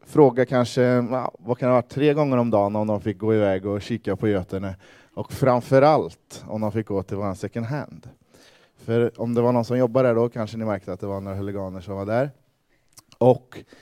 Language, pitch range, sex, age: Swedish, 105-130 Hz, male, 20-39